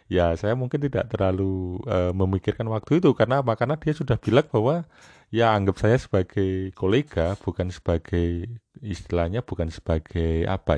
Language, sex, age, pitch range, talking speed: Indonesian, male, 30-49, 95-120 Hz, 145 wpm